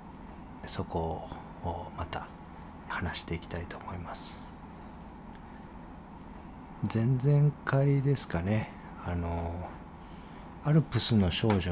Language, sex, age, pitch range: Japanese, male, 40-59, 85-115 Hz